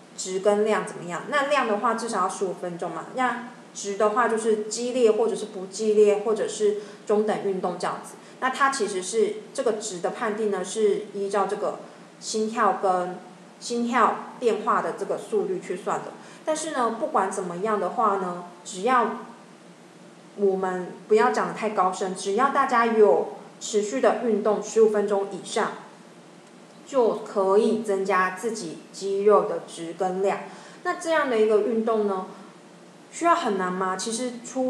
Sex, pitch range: female, 190-225 Hz